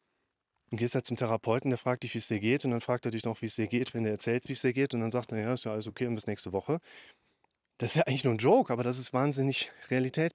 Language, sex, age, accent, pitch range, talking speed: German, male, 30-49, German, 110-130 Hz, 315 wpm